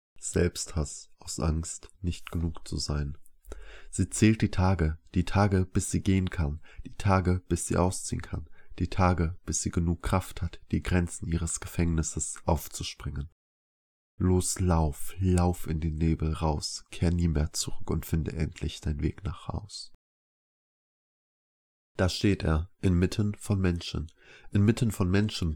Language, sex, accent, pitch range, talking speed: German, male, German, 80-95 Hz, 145 wpm